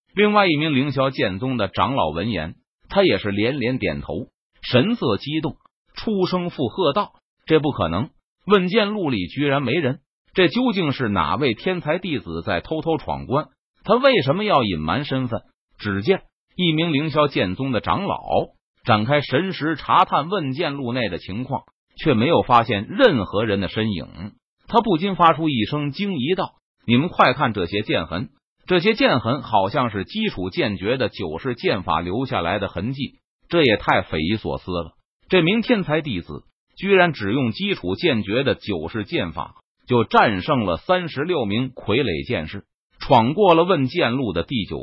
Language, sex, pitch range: Chinese, male, 105-175 Hz